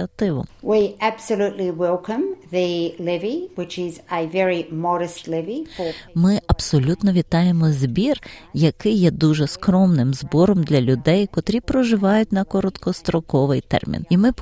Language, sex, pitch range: Ukrainian, female, 145-210 Hz